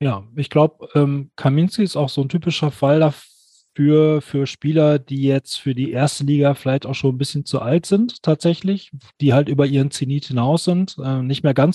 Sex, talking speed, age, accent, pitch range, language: male, 200 wpm, 30-49, German, 135-160 Hz, German